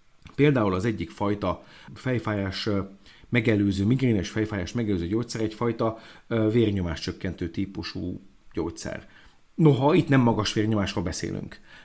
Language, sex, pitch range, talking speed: Hungarian, male, 105-135 Hz, 105 wpm